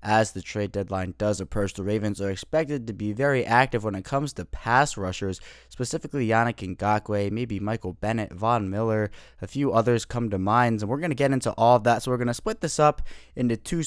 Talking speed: 225 wpm